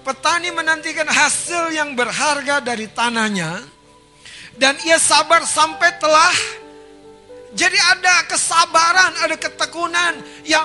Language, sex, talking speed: Indonesian, male, 100 wpm